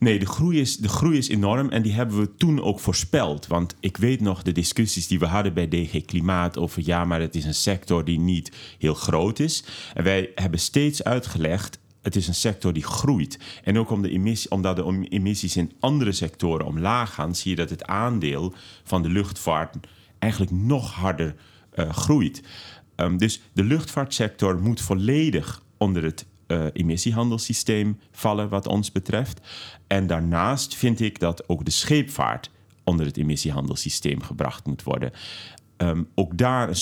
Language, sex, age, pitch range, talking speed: Dutch, male, 40-59, 85-110 Hz, 160 wpm